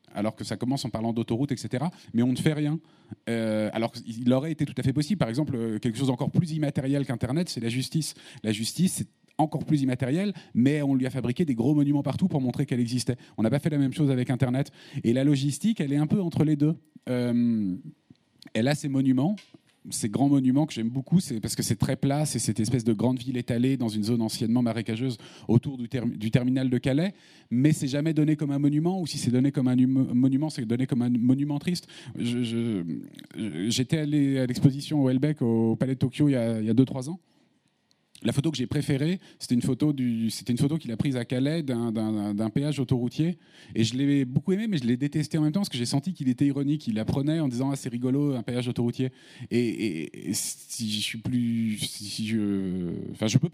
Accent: French